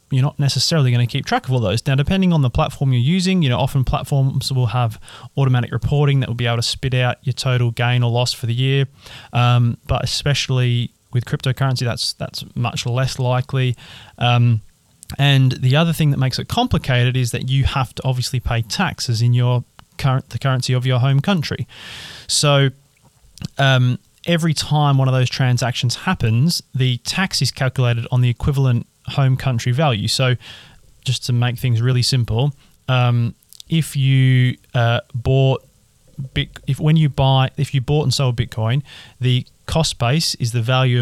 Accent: Australian